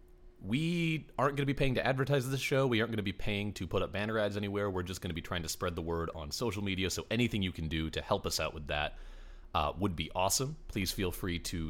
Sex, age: male, 30-49